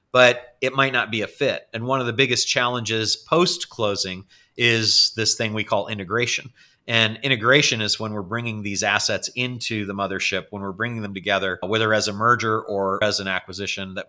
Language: English